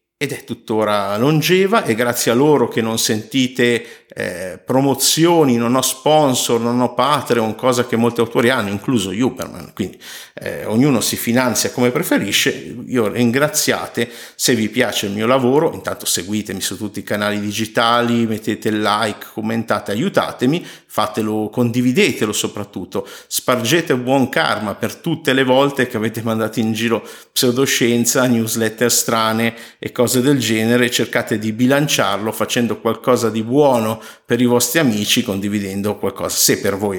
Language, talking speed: Italian, 145 wpm